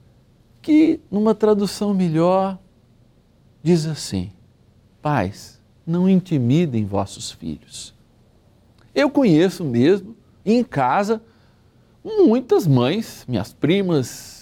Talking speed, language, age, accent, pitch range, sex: 85 wpm, Portuguese, 60-79, Brazilian, 115-190 Hz, male